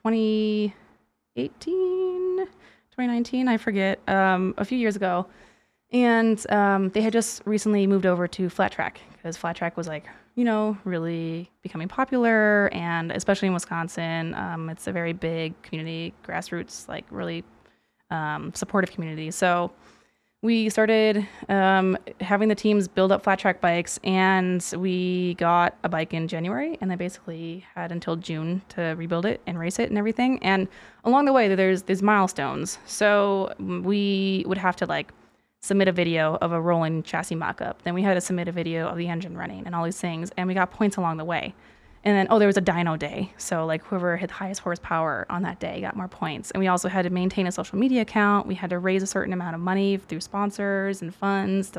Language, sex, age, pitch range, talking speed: English, female, 20-39, 175-210 Hz, 195 wpm